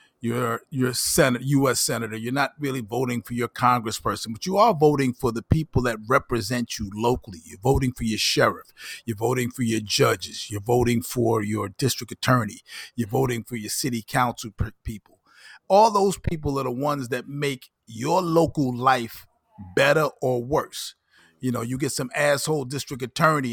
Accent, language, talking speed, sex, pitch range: American, English, 175 wpm, male, 115-130 Hz